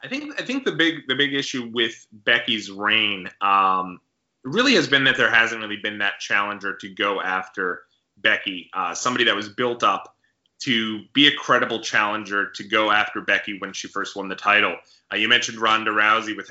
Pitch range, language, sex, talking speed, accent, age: 110-140 Hz, English, male, 195 wpm, American, 20-39